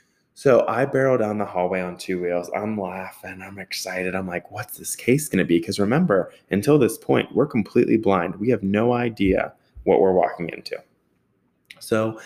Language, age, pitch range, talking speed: English, 20-39, 95-105 Hz, 185 wpm